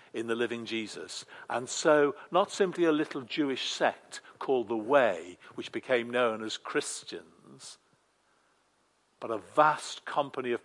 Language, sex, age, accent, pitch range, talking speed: English, male, 60-79, British, 125-175 Hz, 140 wpm